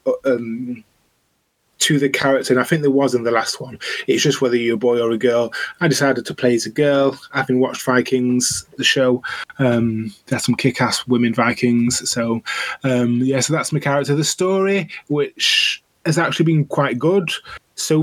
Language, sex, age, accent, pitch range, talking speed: English, male, 20-39, British, 125-145 Hz, 190 wpm